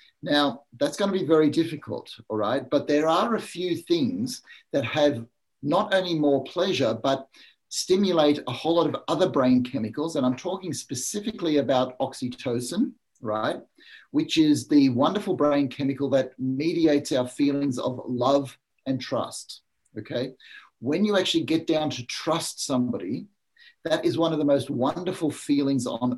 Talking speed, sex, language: 160 wpm, male, English